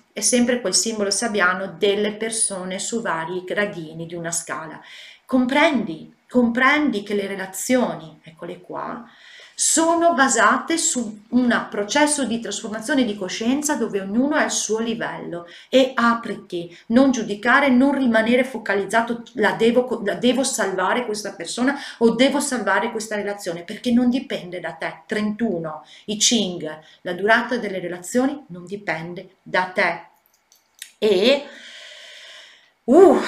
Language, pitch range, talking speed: Italian, 180-245 Hz, 130 wpm